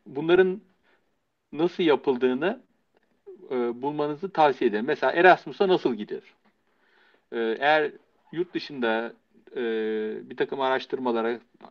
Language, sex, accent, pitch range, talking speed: Turkish, male, native, 125-205 Hz, 95 wpm